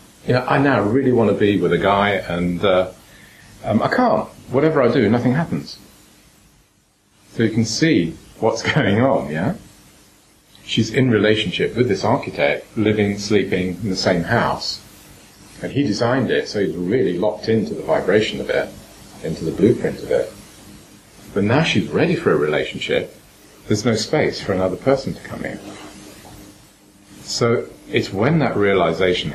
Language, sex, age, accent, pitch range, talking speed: English, male, 40-59, British, 90-105 Hz, 165 wpm